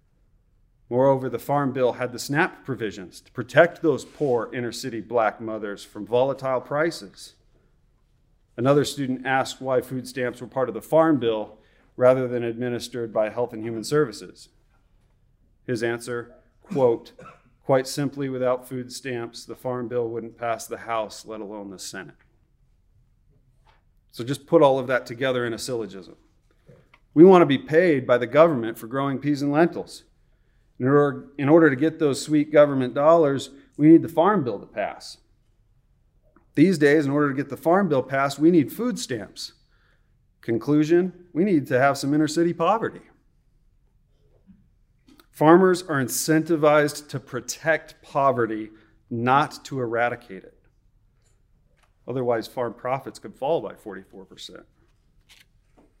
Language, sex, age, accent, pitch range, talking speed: English, male, 40-59, American, 115-145 Hz, 145 wpm